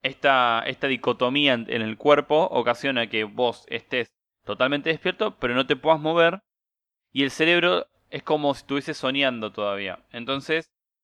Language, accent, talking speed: Spanish, Argentinian, 145 wpm